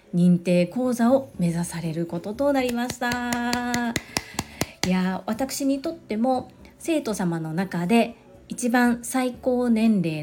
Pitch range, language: 175-230 Hz, Japanese